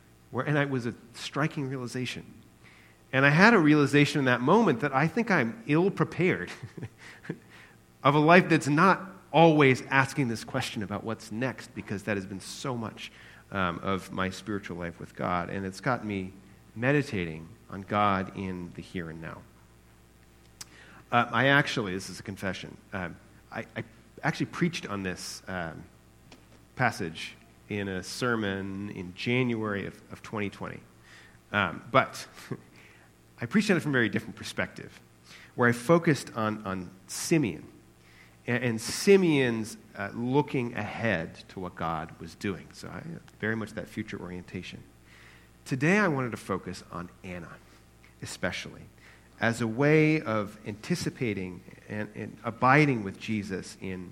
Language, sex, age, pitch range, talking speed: English, male, 40-59, 90-135 Hz, 150 wpm